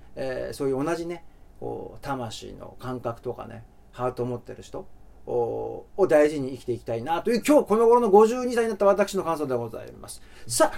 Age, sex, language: 40-59, male, Japanese